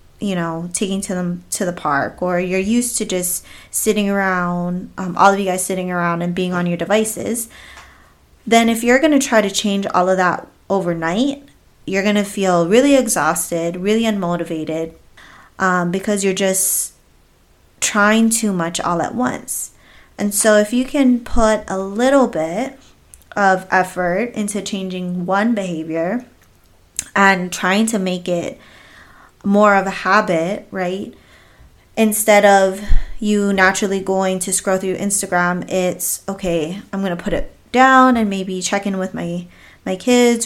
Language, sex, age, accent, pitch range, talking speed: English, female, 20-39, American, 180-215 Hz, 155 wpm